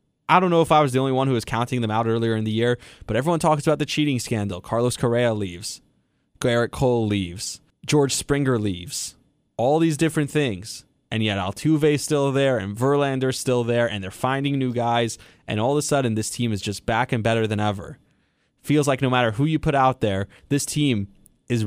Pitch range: 110-135 Hz